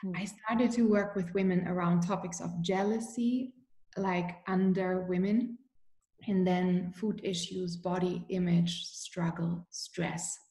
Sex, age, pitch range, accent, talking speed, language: female, 20-39, 180-205 Hz, German, 120 wpm, English